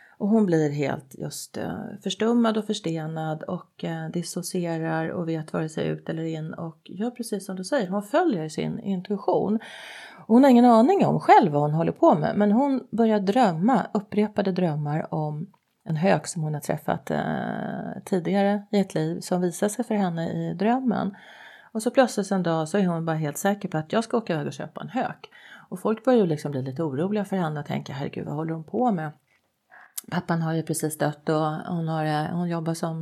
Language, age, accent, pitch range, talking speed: Swedish, 30-49, native, 165-220 Hz, 205 wpm